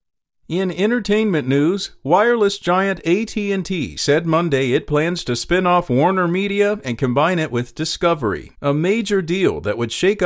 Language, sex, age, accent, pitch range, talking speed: English, male, 40-59, American, 130-175 Hz, 145 wpm